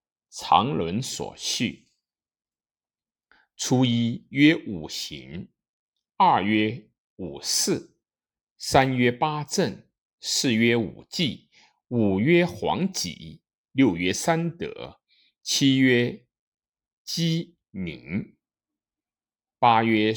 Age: 60-79